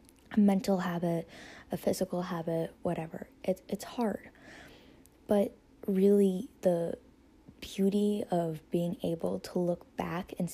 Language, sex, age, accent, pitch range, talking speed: English, female, 10-29, American, 170-195 Hz, 115 wpm